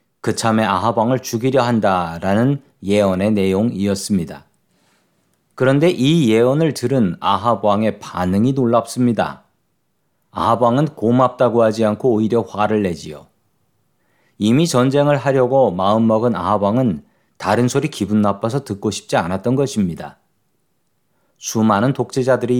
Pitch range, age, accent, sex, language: 105-130 Hz, 40-59, native, male, Korean